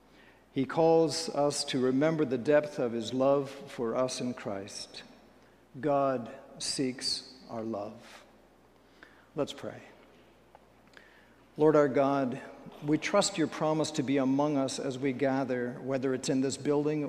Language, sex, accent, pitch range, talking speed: English, male, American, 130-155 Hz, 135 wpm